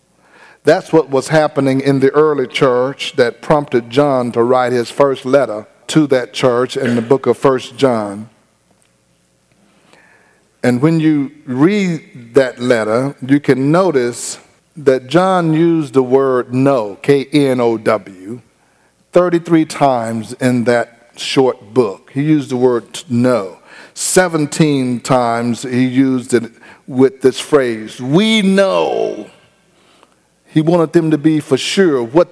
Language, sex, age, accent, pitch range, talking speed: English, male, 50-69, American, 125-160 Hz, 130 wpm